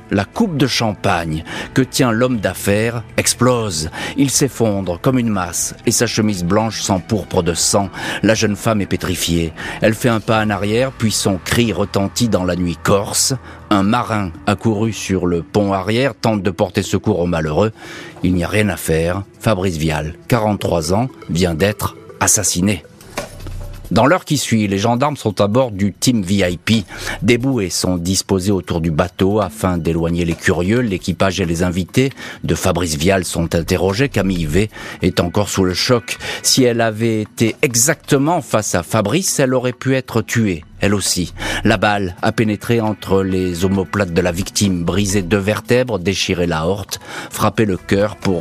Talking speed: 175 wpm